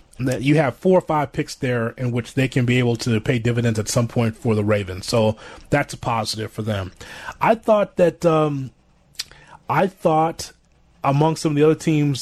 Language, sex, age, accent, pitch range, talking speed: English, male, 30-49, American, 125-160 Hz, 200 wpm